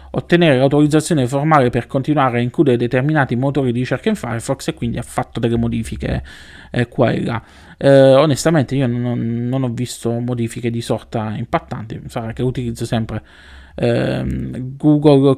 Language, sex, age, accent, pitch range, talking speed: Italian, male, 20-39, native, 115-140 Hz, 155 wpm